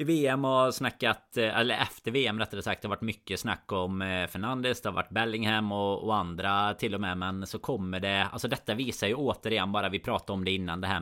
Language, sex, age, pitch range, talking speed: Swedish, male, 30-49, 90-115 Hz, 230 wpm